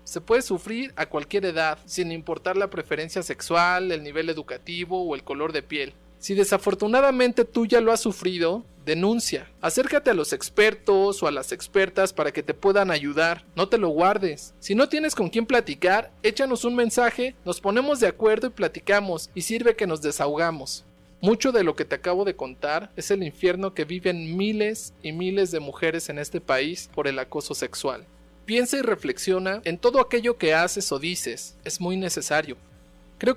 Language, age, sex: Spanish, 40-59, male